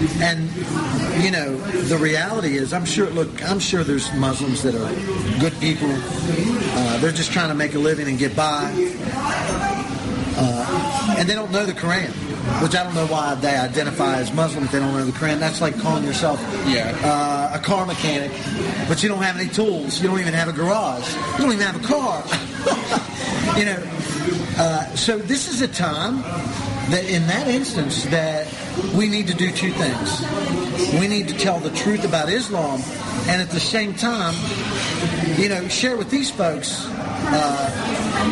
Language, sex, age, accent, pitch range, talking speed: English, male, 40-59, American, 150-205 Hz, 180 wpm